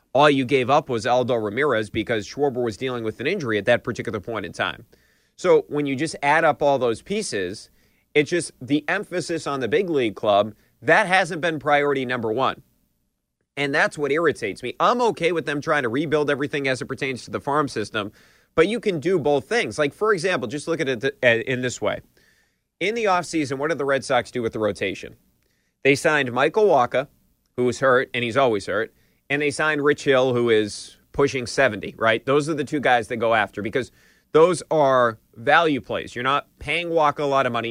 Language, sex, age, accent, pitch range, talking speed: English, male, 30-49, American, 120-150 Hz, 215 wpm